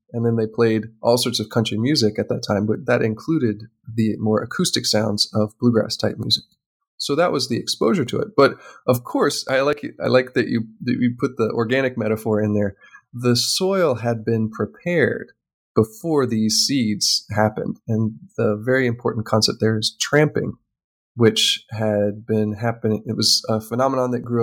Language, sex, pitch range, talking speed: English, male, 110-125 Hz, 180 wpm